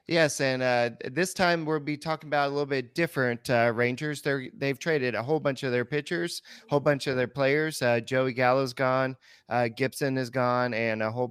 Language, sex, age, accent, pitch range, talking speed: English, male, 30-49, American, 120-140 Hz, 225 wpm